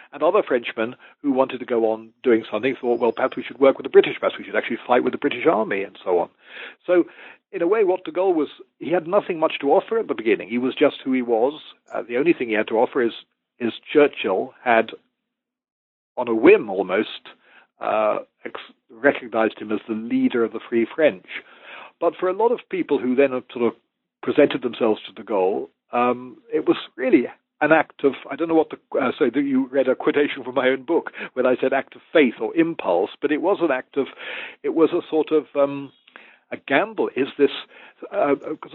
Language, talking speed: English, 220 wpm